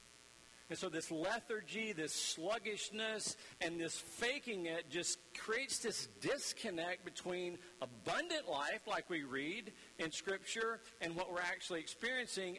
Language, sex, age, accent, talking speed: English, male, 50-69, American, 130 wpm